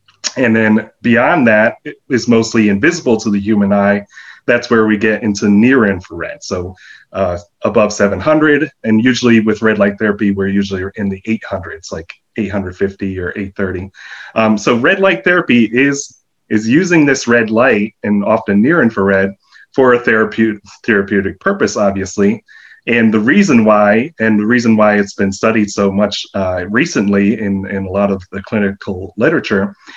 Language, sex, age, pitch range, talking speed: English, male, 30-49, 100-120 Hz, 165 wpm